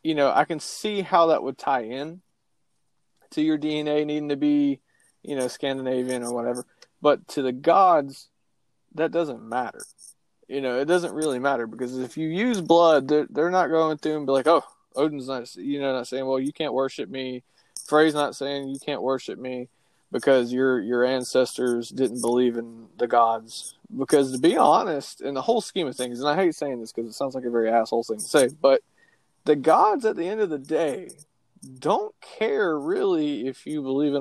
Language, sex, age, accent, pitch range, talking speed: English, male, 20-39, American, 125-150 Hz, 205 wpm